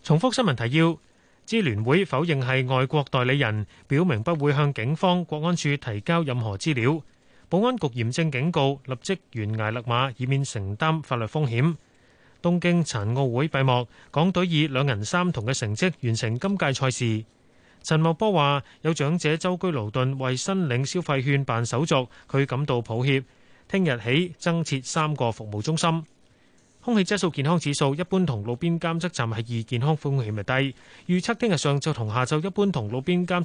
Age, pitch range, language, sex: 30-49, 125-170 Hz, Chinese, male